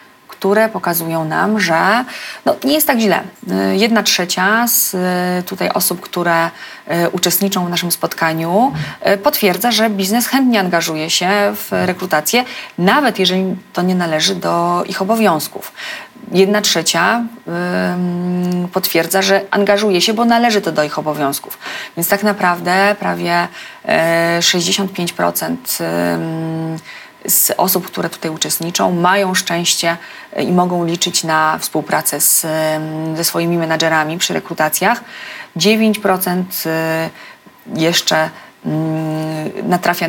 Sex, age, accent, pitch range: female, 30-49, native, 165-205 Hz